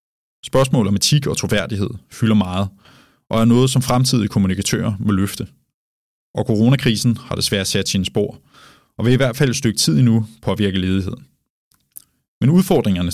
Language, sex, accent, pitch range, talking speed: Danish, male, native, 100-125 Hz, 165 wpm